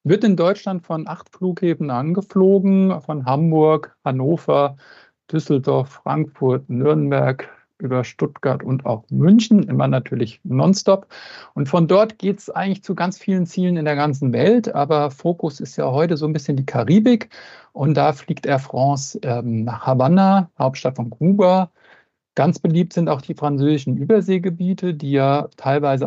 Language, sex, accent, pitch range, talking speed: German, male, German, 135-185 Hz, 150 wpm